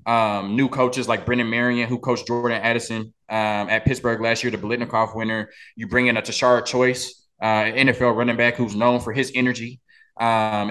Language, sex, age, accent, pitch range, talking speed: English, male, 20-39, American, 115-145 Hz, 190 wpm